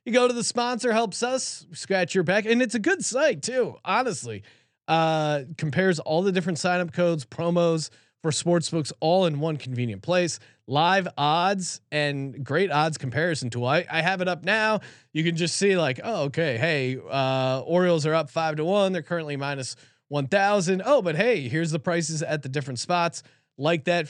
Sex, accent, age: male, American, 30-49